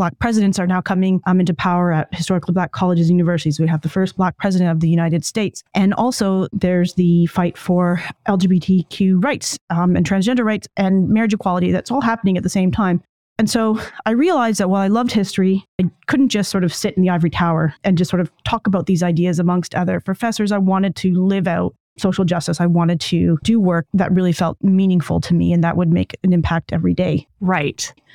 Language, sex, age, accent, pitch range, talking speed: English, female, 30-49, American, 175-205 Hz, 220 wpm